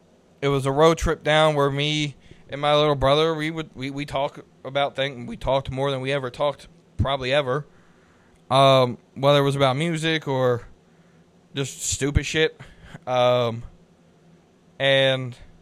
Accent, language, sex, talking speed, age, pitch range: American, English, male, 155 wpm, 20-39, 130-155 Hz